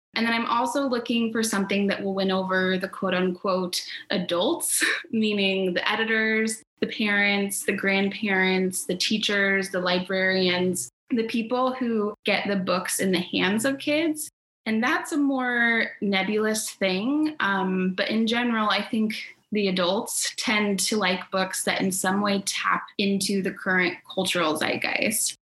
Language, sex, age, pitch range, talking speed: English, female, 20-39, 185-230 Hz, 155 wpm